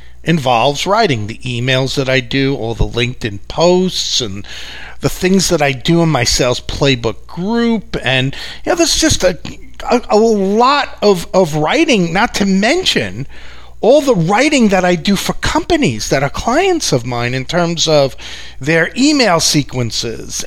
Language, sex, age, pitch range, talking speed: English, male, 40-59, 145-230 Hz, 165 wpm